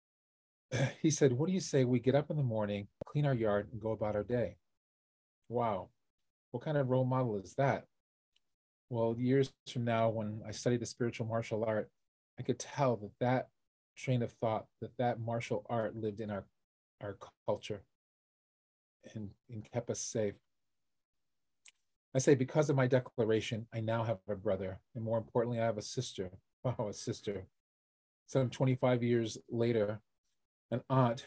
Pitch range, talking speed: 105-125 Hz, 170 wpm